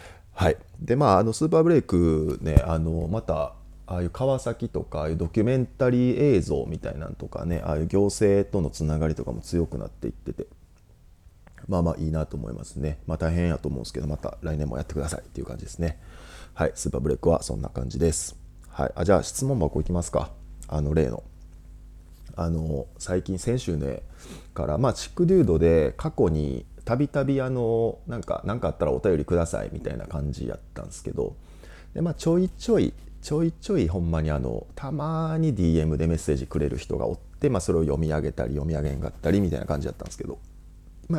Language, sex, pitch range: Japanese, male, 80-100 Hz